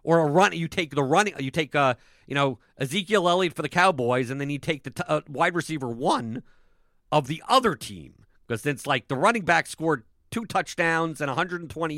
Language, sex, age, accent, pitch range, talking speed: English, male, 50-69, American, 130-170 Hz, 200 wpm